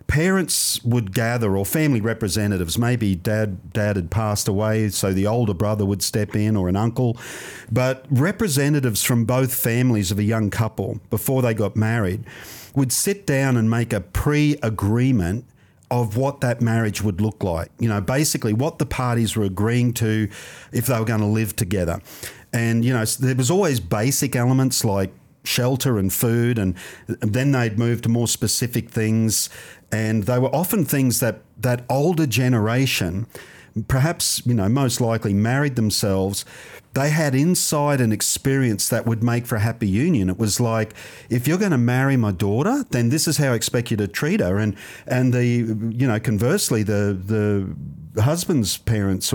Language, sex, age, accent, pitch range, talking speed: English, male, 50-69, Australian, 105-130 Hz, 175 wpm